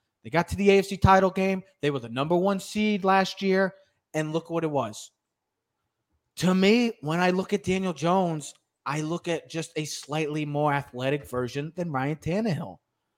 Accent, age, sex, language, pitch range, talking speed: American, 30-49, male, English, 135-190 Hz, 180 wpm